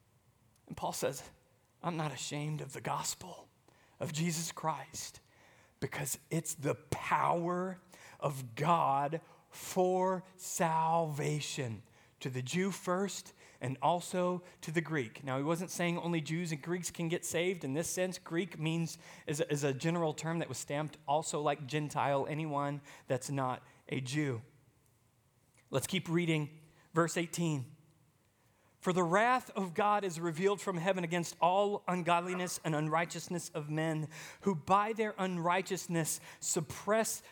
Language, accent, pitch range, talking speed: English, American, 150-190 Hz, 140 wpm